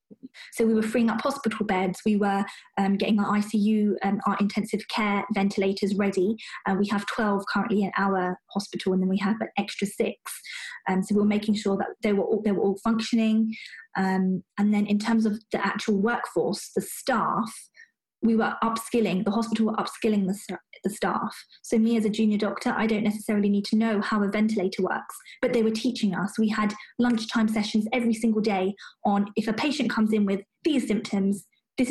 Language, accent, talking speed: English, British, 200 wpm